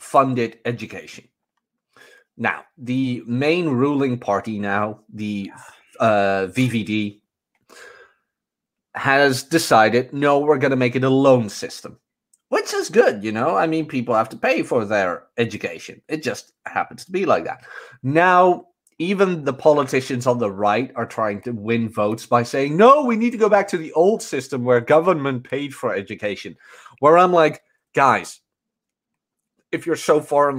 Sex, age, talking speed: male, 30-49, 160 wpm